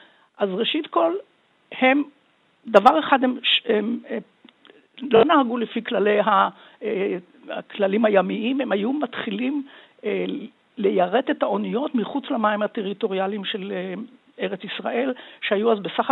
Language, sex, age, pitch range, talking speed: Hebrew, female, 60-79, 215-270 Hz, 110 wpm